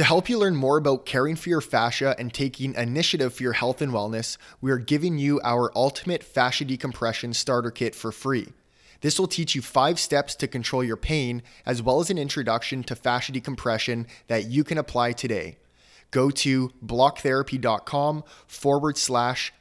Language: English